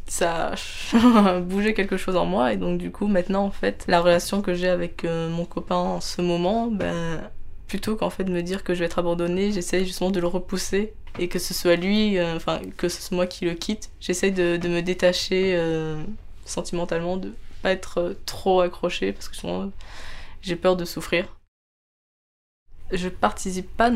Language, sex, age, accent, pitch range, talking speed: French, female, 20-39, French, 170-185 Hz, 195 wpm